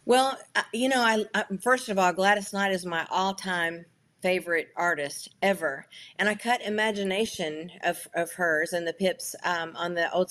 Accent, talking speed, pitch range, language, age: American, 175 wpm, 175-220 Hz, English, 50-69